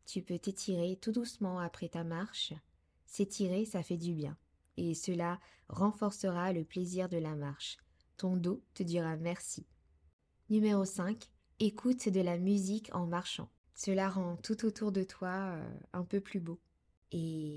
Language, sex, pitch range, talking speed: French, female, 165-205 Hz, 155 wpm